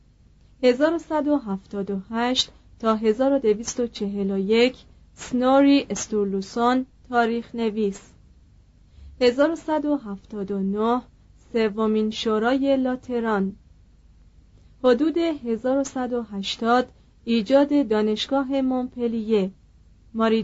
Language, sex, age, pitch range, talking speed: Persian, female, 40-59, 210-260 Hz, 50 wpm